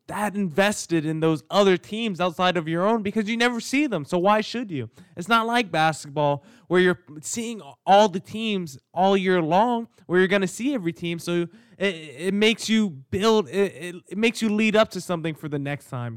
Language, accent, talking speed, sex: English, American, 215 wpm, male